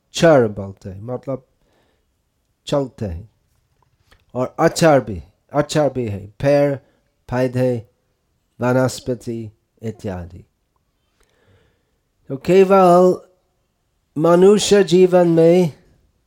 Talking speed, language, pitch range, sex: 75 wpm, Hindi, 115-165 Hz, male